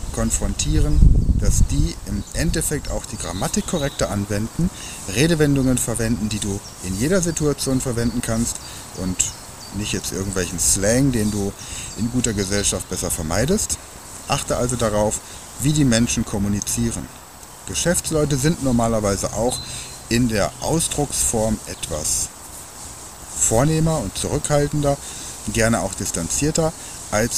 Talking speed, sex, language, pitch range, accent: 115 wpm, male, German, 95-125 Hz, German